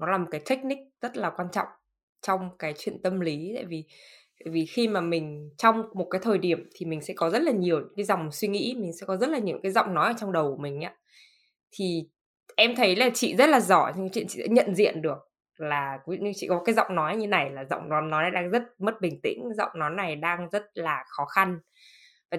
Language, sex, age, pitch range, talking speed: Vietnamese, female, 10-29, 165-225 Hz, 245 wpm